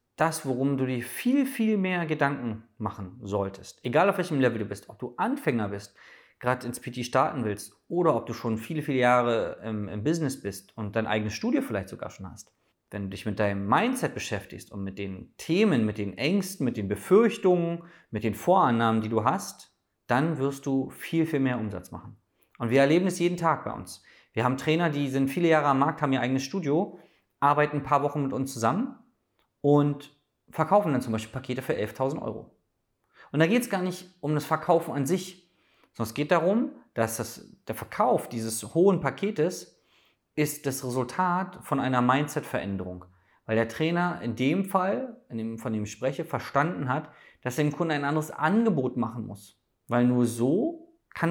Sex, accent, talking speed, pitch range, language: male, German, 195 wpm, 110-165 Hz, German